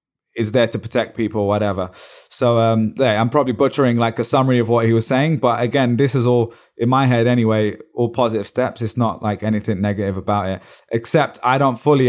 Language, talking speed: English, 220 wpm